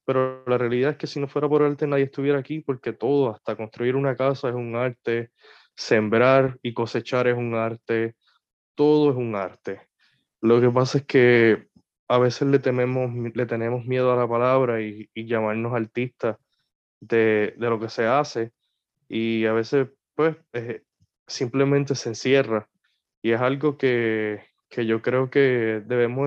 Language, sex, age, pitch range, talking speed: Spanish, male, 20-39, 115-140 Hz, 170 wpm